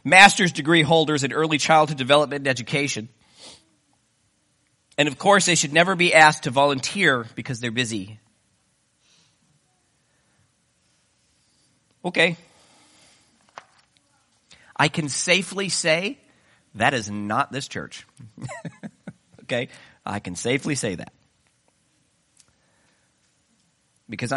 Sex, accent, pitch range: male, American, 115-160 Hz